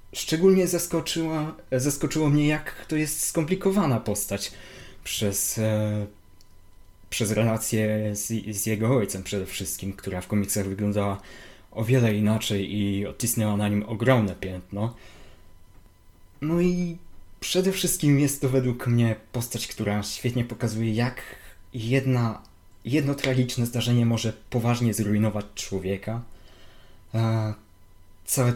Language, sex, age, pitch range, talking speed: Polish, male, 20-39, 100-120 Hz, 115 wpm